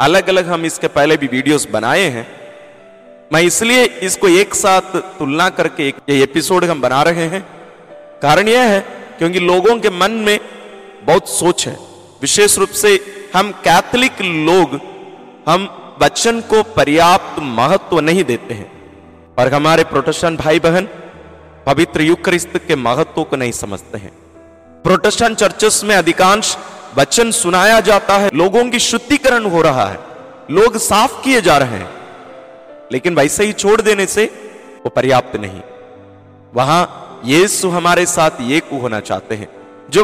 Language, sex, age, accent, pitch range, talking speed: Hindi, male, 40-59, native, 145-210 Hz, 145 wpm